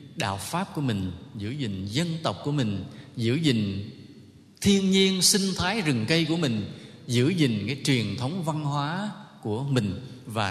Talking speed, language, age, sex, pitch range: 170 wpm, English, 20-39, male, 110-150 Hz